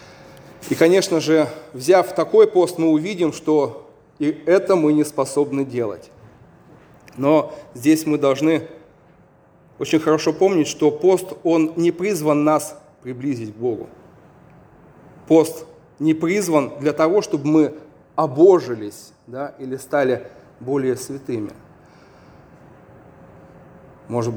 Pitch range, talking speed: 145-180 Hz, 110 wpm